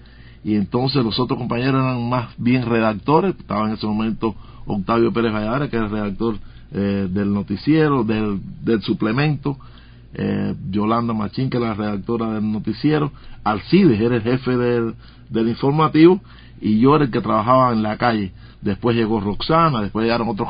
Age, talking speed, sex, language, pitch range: 60-79, 165 wpm, male, Spanish, 110-135 Hz